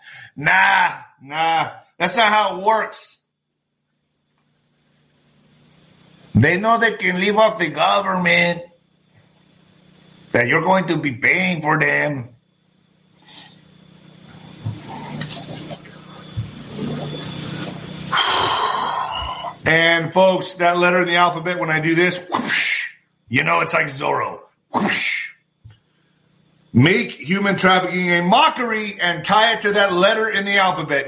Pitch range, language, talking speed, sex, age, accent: 160-200 Hz, English, 105 wpm, male, 50-69, American